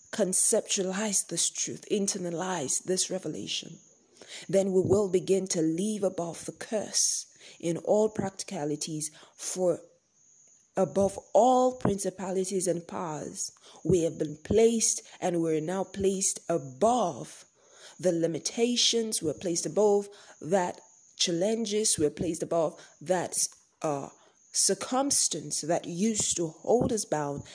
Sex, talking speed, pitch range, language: female, 115 wpm, 170-205 Hz, English